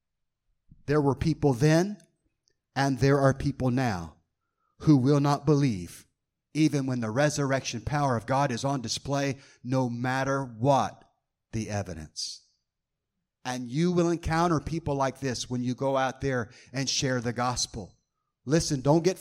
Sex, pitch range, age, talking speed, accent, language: male, 130-170 Hz, 30-49, 145 wpm, American, English